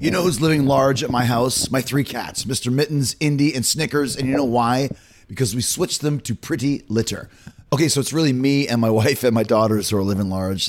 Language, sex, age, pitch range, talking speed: English, male, 30-49, 115-150 Hz, 235 wpm